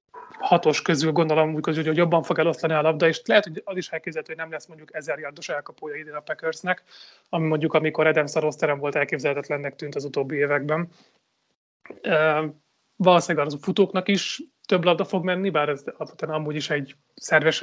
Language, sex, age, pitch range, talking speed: Hungarian, male, 30-49, 150-175 Hz, 185 wpm